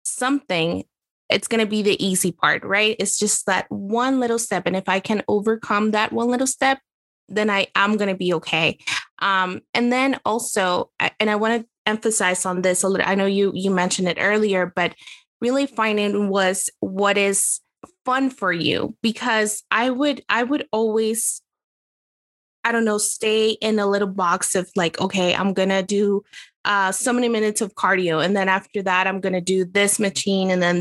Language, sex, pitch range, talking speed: English, female, 190-225 Hz, 190 wpm